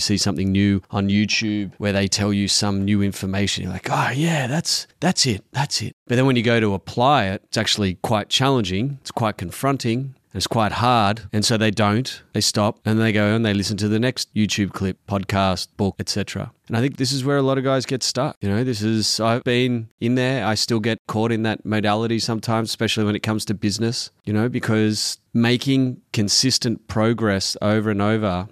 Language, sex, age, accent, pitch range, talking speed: English, male, 30-49, Australian, 100-120 Hz, 215 wpm